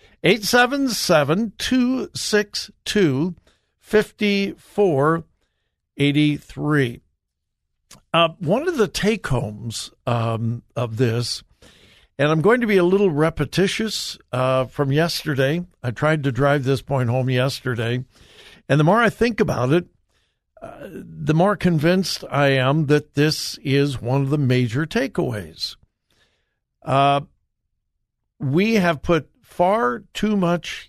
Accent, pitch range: American, 125-180 Hz